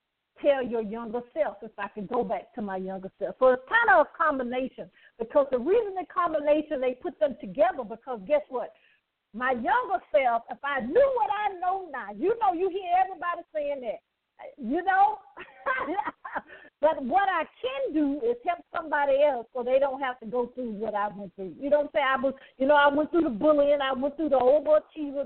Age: 50-69